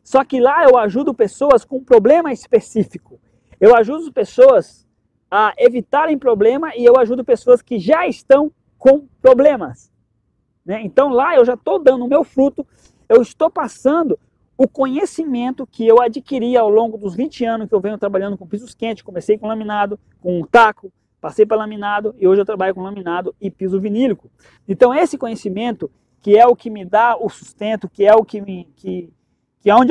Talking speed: 180 wpm